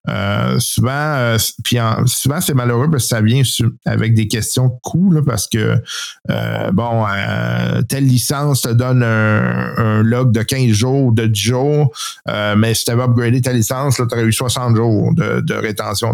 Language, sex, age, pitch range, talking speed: French, male, 50-69, 110-125 Hz, 195 wpm